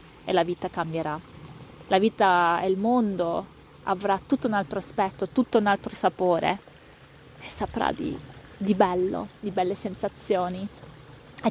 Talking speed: 140 wpm